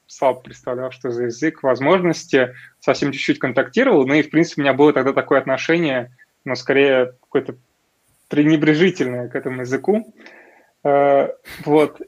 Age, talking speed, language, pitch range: 20-39, 135 wpm, Russian, 135-165 Hz